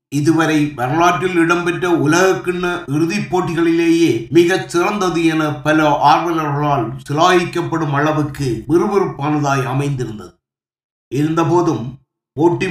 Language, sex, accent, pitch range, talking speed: Tamil, male, native, 150-180 Hz, 75 wpm